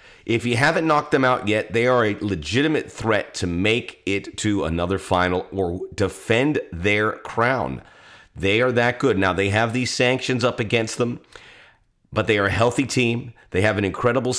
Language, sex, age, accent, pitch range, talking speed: English, male, 40-59, American, 100-125 Hz, 185 wpm